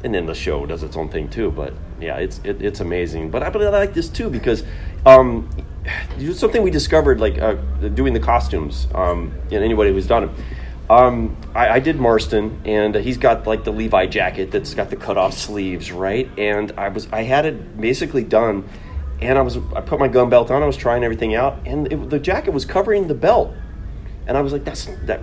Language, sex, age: English, male, 30-49